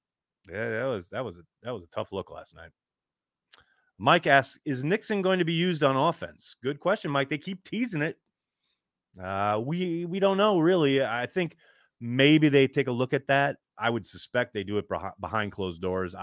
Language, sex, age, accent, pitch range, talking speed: English, male, 30-49, American, 95-145 Hz, 200 wpm